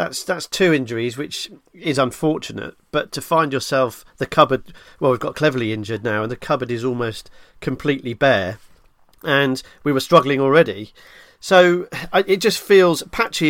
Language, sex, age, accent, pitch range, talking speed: English, male, 40-59, British, 125-155 Hz, 160 wpm